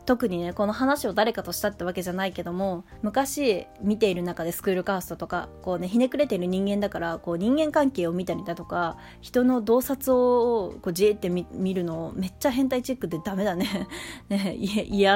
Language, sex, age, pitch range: Japanese, female, 20-39, 180-255 Hz